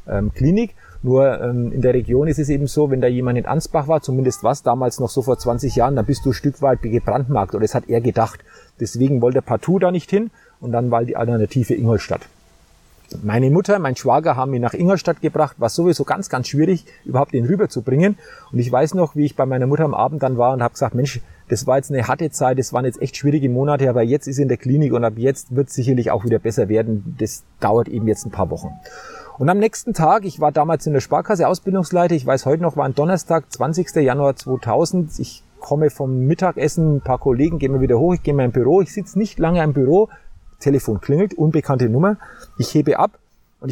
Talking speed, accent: 230 wpm, German